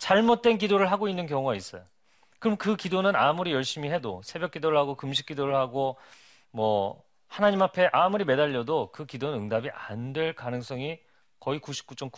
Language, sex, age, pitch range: Korean, male, 40-59, 120-180 Hz